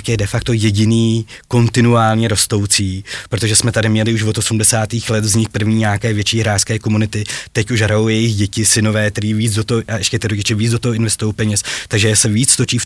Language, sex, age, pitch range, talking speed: Czech, male, 20-39, 105-120 Hz, 205 wpm